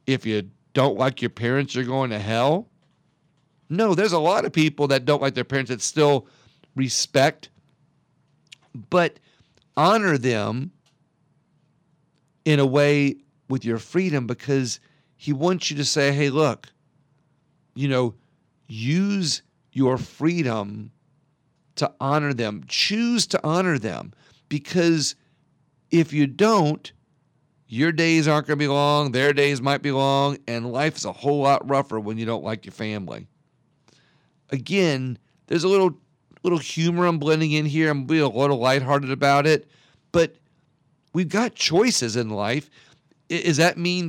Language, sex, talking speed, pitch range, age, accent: English, male, 145 wpm, 135-155 Hz, 50-69, American